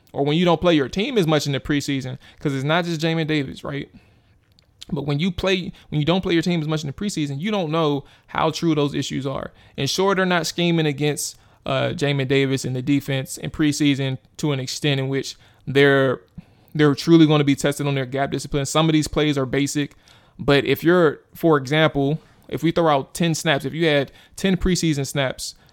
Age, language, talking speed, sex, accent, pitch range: 20-39, English, 220 wpm, male, American, 140-165 Hz